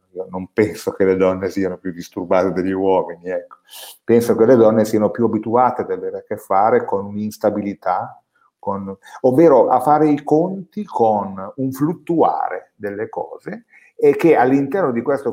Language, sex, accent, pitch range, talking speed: Italian, male, native, 100-145 Hz, 160 wpm